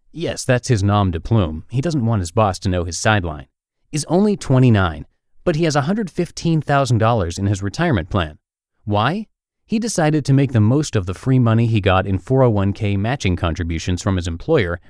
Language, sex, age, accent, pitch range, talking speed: English, male, 30-49, American, 100-150 Hz, 185 wpm